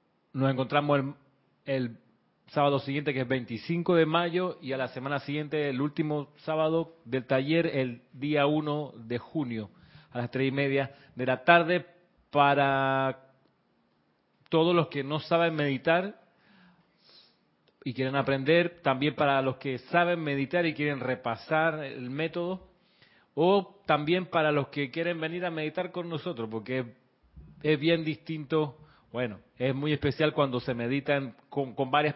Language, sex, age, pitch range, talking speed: Spanish, male, 30-49, 130-155 Hz, 150 wpm